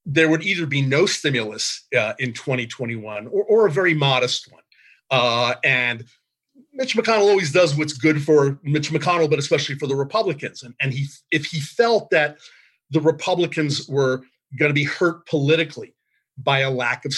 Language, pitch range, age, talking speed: English, 120-155 Hz, 40-59, 175 wpm